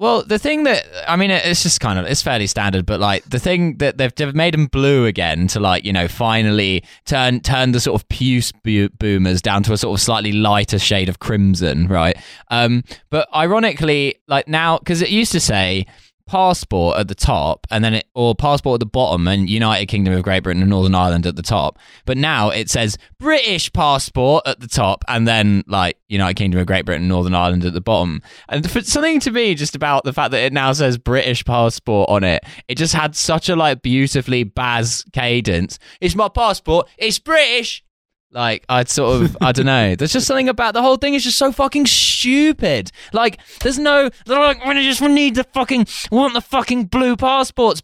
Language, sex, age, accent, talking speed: English, male, 20-39, British, 210 wpm